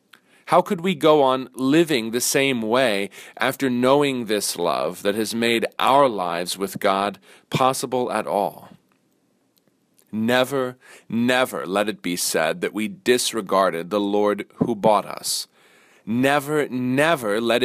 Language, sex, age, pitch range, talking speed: English, male, 40-59, 105-130 Hz, 135 wpm